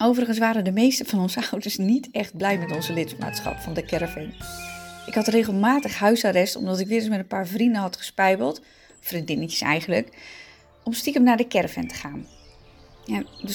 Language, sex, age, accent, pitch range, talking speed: Dutch, female, 20-39, Dutch, 185-240 Hz, 175 wpm